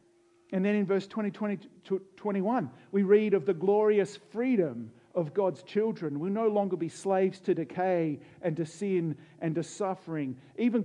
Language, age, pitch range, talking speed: English, 50-69, 165-205 Hz, 165 wpm